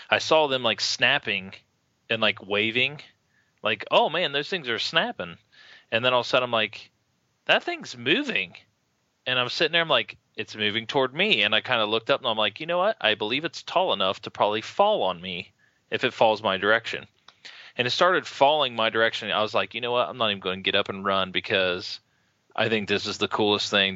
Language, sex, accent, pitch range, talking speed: English, male, American, 95-115 Hz, 230 wpm